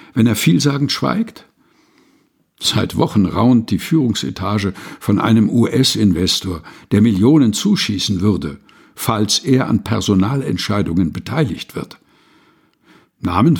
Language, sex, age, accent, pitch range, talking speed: German, male, 60-79, German, 100-135 Hz, 100 wpm